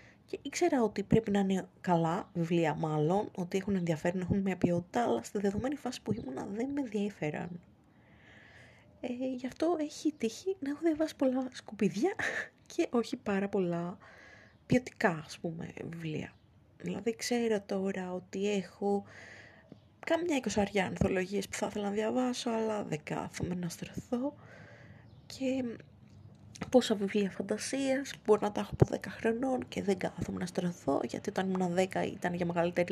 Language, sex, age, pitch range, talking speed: Greek, female, 20-39, 180-240 Hz, 150 wpm